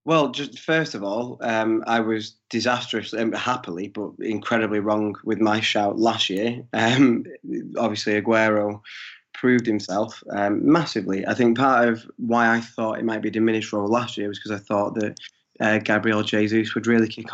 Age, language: 20-39, English